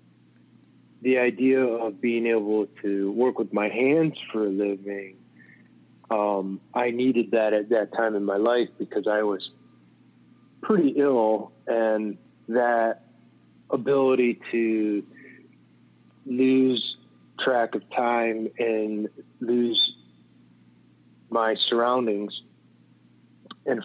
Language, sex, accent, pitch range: English, male, American, 100-115 Hz